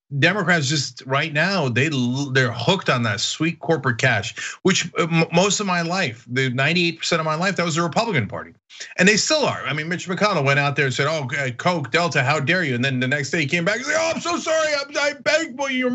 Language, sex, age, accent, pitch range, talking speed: English, male, 40-59, American, 125-180 Hz, 240 wpm